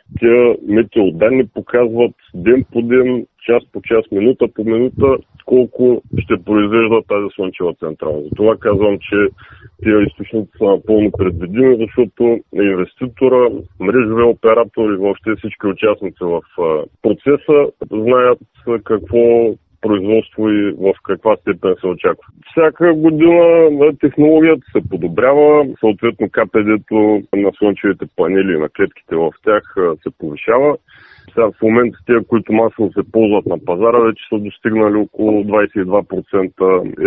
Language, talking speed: Bulgarian, 125 wpm